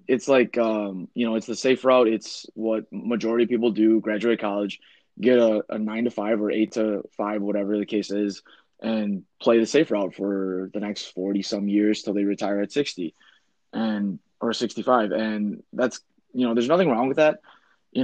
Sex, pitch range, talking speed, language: male, 100-115 Hz, 200 wpm, English